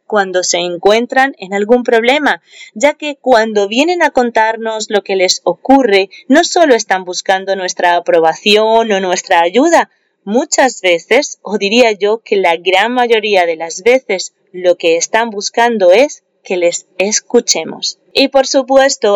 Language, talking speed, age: Spanish, 150 wpm, 30-49